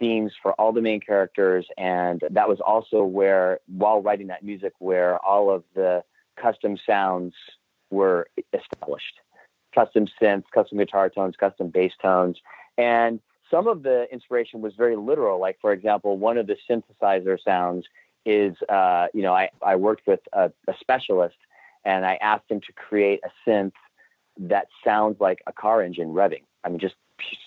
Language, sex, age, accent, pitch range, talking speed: English, male, 40-59, American, 95-120 Hz, 155 wpm